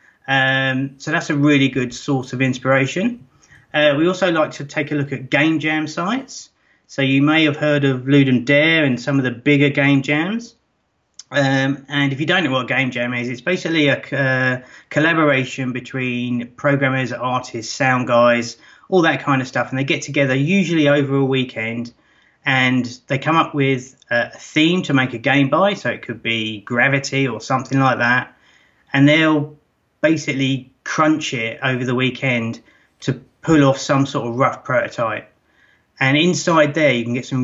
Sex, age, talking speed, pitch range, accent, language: male, 30-49, 180 wpm, 125-145 Hz, British, English